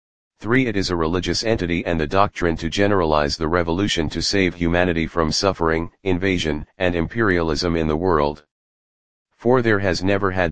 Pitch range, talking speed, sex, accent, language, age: 80-95 Hz, 165 wpm, male, American, English, 40-59